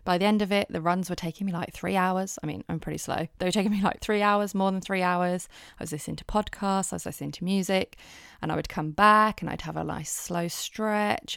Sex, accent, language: female, British, English